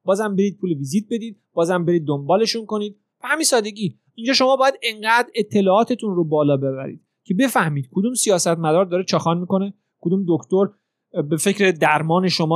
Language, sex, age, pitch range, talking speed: Persian, male, 30-49, 170-220 Hz, 165 wpm